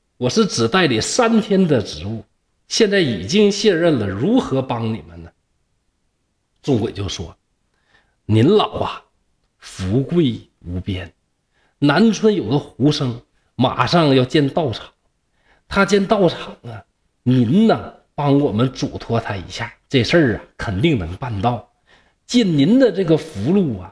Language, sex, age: Chinese, male, 50-69